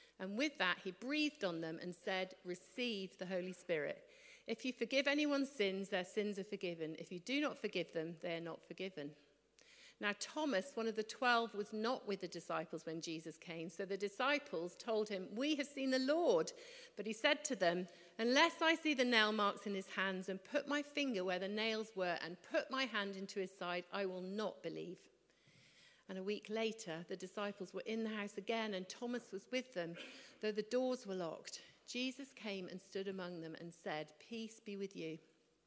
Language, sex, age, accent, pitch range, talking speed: English, female, 50-69, British, 180-245 Hz, 205 wpm